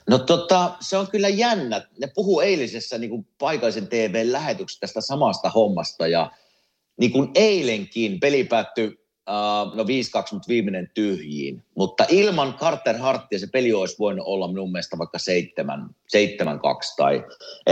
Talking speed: 130 wpm